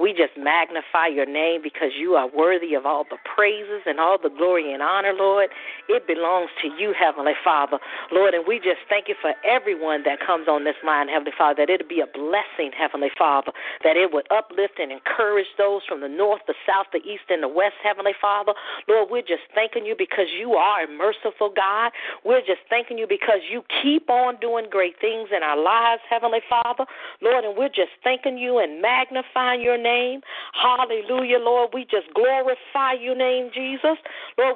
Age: 40-59